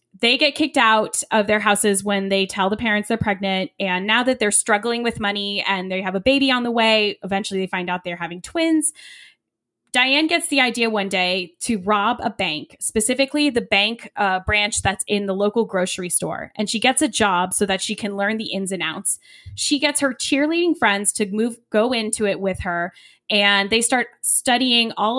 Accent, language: American, English